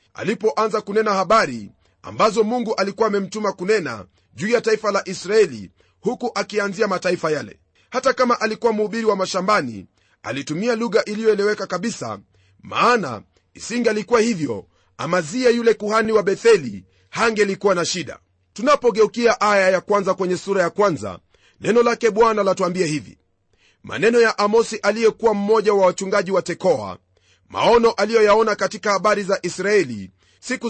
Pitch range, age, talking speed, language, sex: 170-225 Hz, 40-59, 135 wpm, Swahili, male